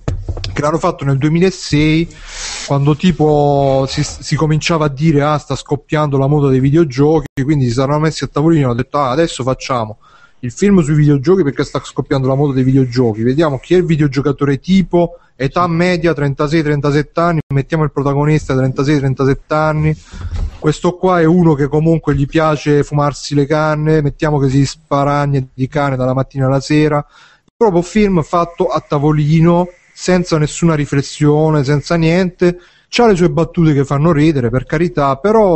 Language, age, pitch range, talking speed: Italian, 30-49, 135-160 Hz, 165 wpm